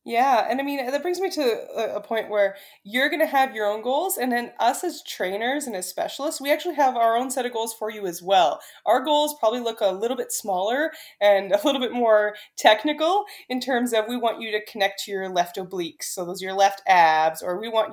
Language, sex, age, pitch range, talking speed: English, female, 20-39, 195-255 Hz, 245 wpm